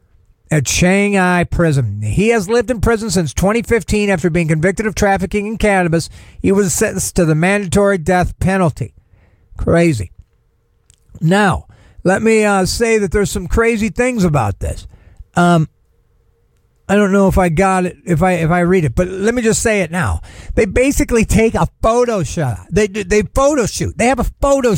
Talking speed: 175 wpm